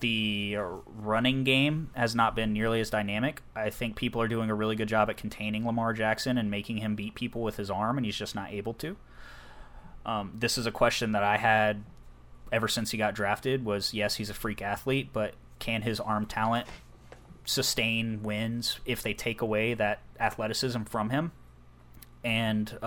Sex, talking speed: male, 185 wpm